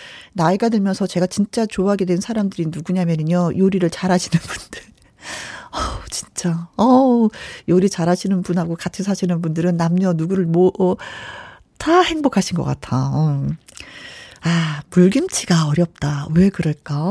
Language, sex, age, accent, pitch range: Korean, female, 40-59, native, 175-245 Hz